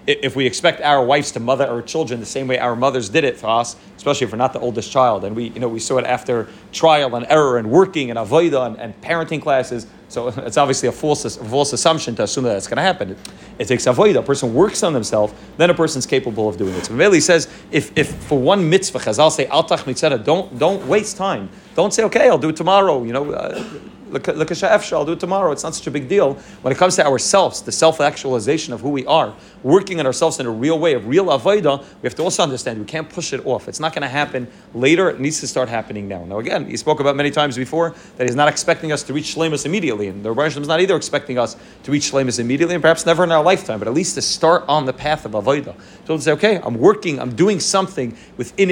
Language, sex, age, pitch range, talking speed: English, male, 30-49, 125-165 Hz, 255 wpm